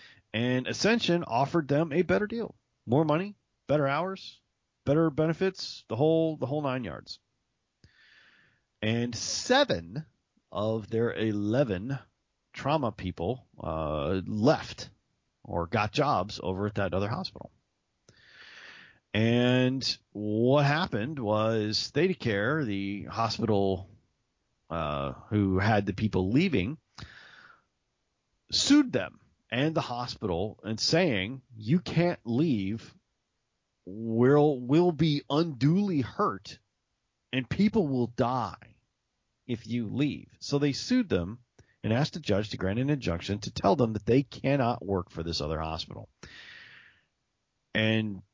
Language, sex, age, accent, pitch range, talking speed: English, male, 40-59, American, 100-140 Hz, 120 wpm